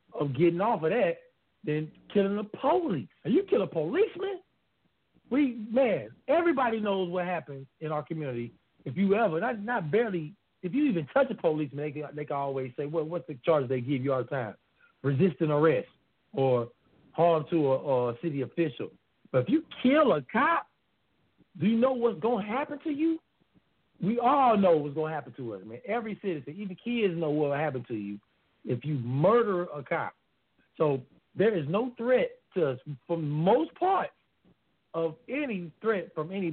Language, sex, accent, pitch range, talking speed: English, male, American, 145-235 Hz, 190 wpm